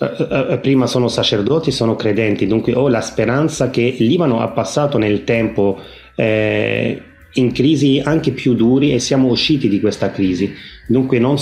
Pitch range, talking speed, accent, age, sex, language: 115-150 Hz, 150 wpm, native, 30-49, male, Italian